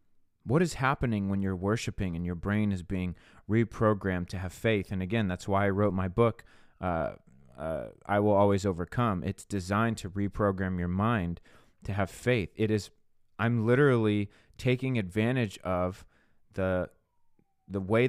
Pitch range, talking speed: 95-115 Hz, 160 wpm